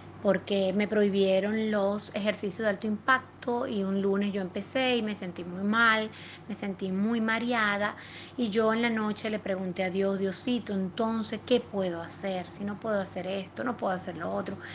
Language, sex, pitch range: Spanish, female, 195-225 Hz